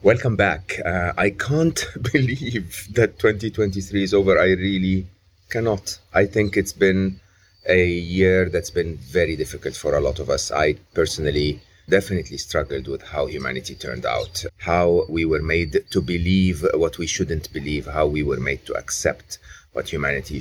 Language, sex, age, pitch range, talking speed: English, male, 30-49, 80-100 Hz, 160 wpm